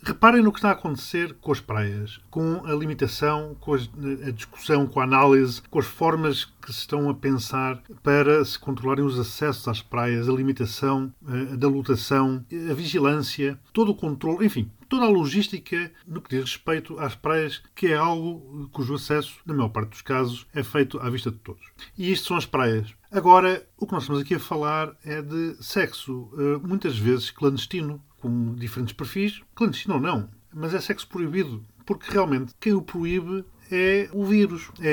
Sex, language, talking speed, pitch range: male, Portuguese, 180 wpm, 130-180 Hz